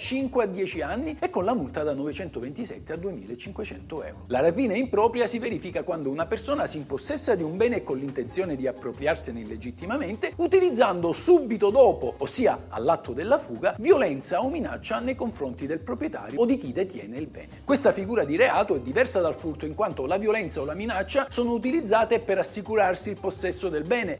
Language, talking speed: Italian, 185 wpm